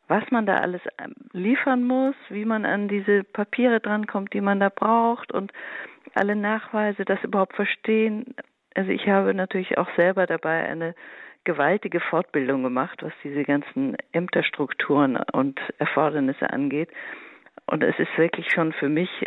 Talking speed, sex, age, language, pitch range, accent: 150 wpm, female, 50-69, German, 160-210 Hz, German